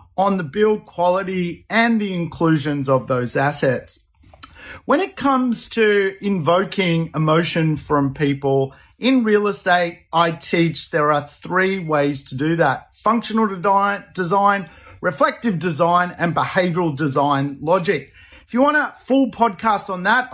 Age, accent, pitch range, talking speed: 40-59, Australian, 165-210 Hz, 135 wpm